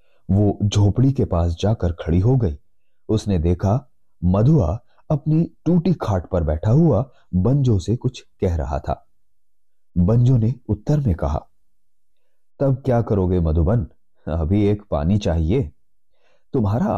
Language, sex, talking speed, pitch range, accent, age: Hindi, male, 130 wpm, 90-125 Hz, native, 30-49